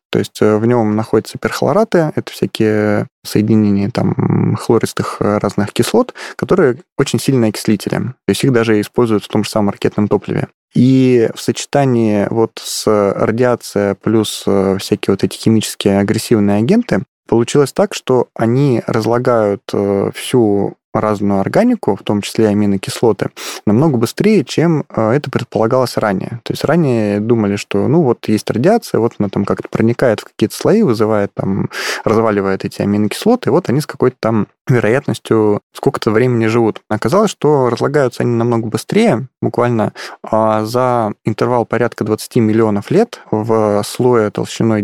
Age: 20-39